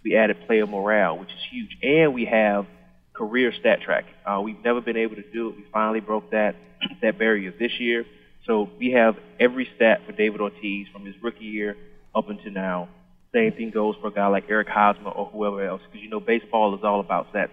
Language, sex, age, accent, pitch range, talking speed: English, male, 20-39, American, 100-120 Hz, 220 wpm